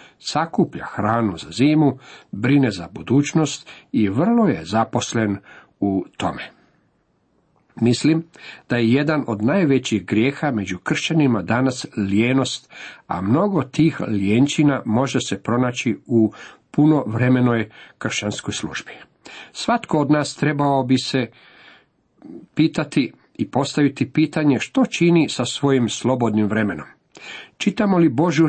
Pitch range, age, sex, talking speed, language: 115-150 Hz, 50-69, male, 115 wpm, Croatian